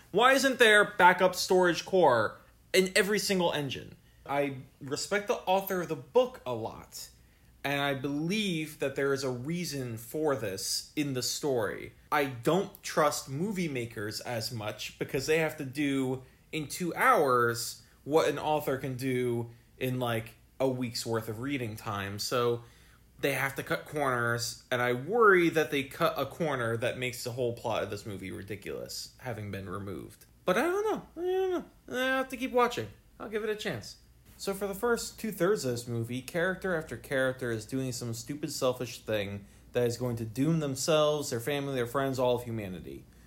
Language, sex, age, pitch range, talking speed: English, male, 20-39, 120-170 Hz, 185 wpm